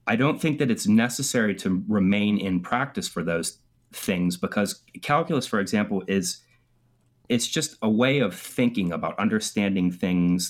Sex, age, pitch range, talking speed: male, 30-49, 90-125 Hz, 155 wpm